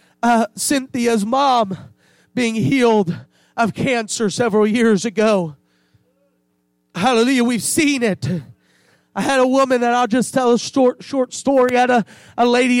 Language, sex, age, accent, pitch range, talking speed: English, male, 30-49, American, 170-250 Hz, 145 wpm